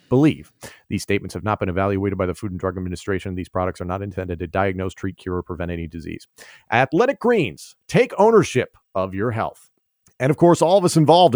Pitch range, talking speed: 100-135 Hz, 210 wpm